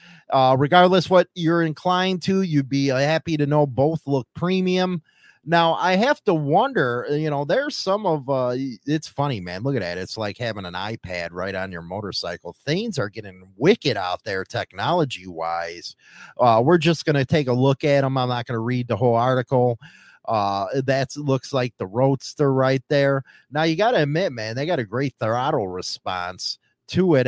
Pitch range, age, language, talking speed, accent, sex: 110-160 Hz, 30-49, English, 195 wpm, American, male